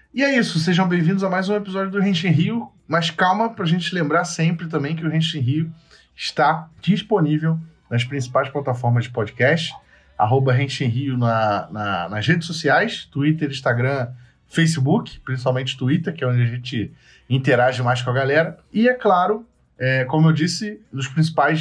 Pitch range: 125-170 Hz